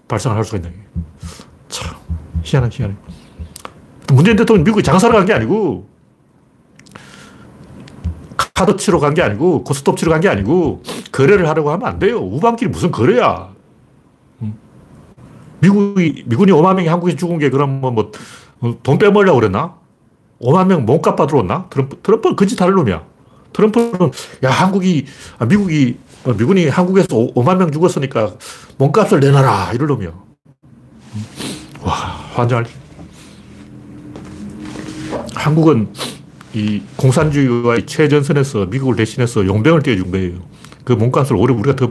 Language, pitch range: Korean, 115-175 Hz